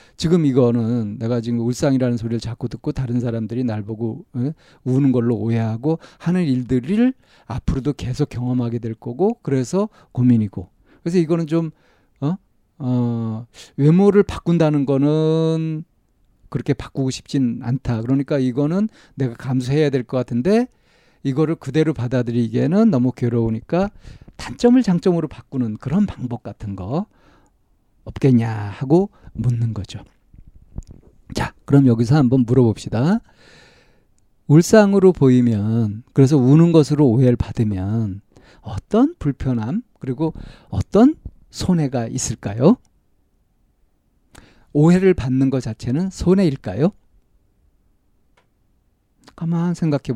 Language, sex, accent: Korean, male, native